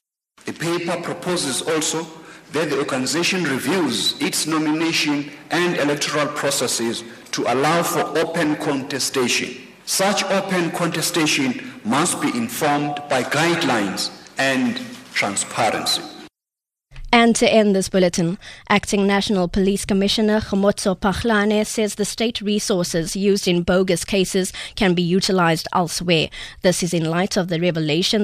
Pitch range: 165-200 Hz